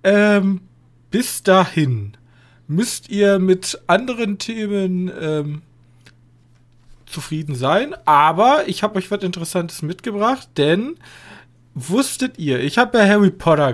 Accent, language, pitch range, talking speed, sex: German, German, 125-175 Hz, 115 wpm, male